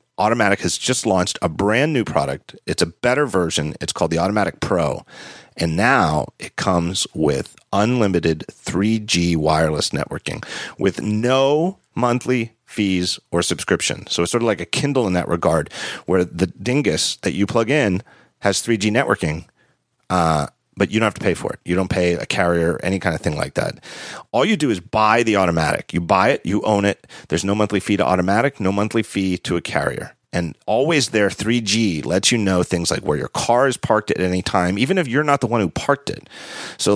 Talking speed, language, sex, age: 200 wpm, English, male, 40-59